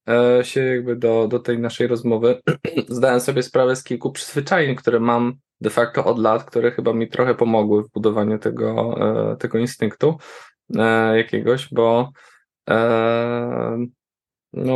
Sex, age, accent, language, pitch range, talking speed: male, 20-39, native, Polish, 115-130 Hz, 135 wpm